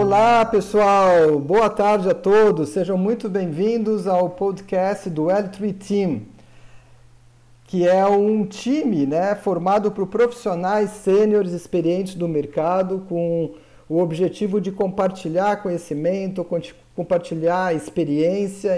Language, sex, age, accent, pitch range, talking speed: Portuguese, male, 50-69, Brazilian, 170-210 Hz, 110 wpm